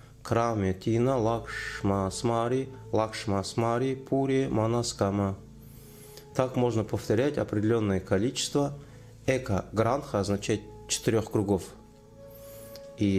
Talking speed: 80 wpm